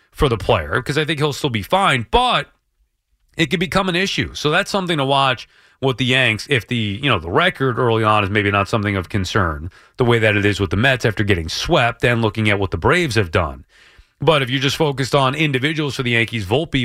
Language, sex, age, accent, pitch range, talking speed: English, male, 30-49, American, 110-155 Hz, 240 wpm